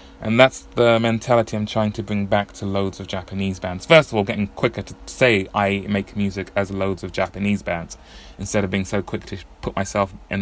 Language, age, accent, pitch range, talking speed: English, 20-39, British, 95-115 Hz, 220 wpm